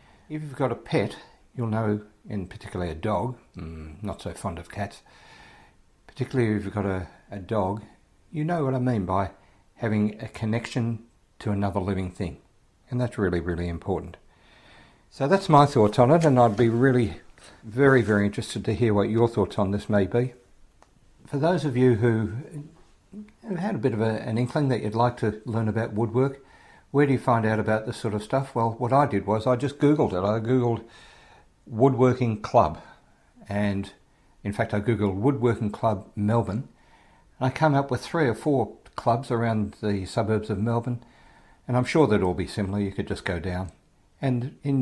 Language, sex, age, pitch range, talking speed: English, male, 60-79, 100-125 Hz, 190 wpm